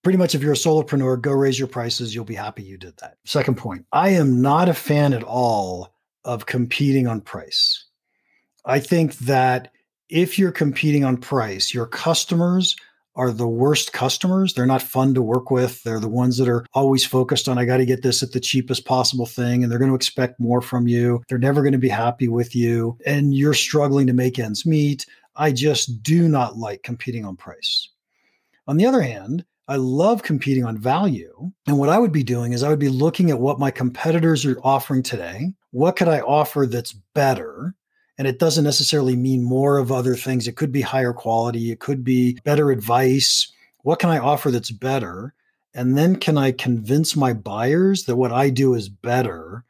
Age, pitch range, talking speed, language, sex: 40-59, 120-145 Hz, 205 wpm, English, male